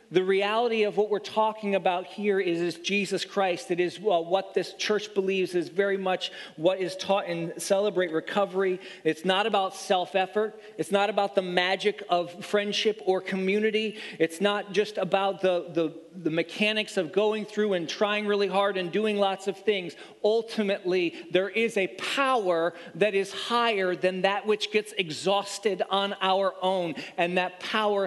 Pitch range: 165-195 Hz